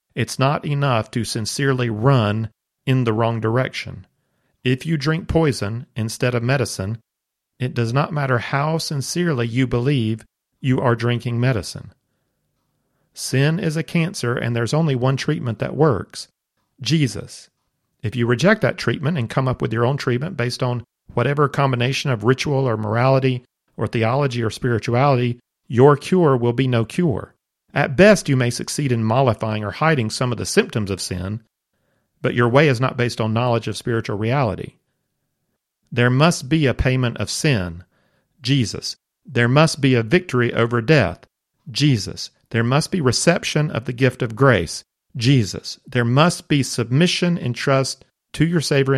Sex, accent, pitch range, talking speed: male, American, 115-145 Hz, 160 wpm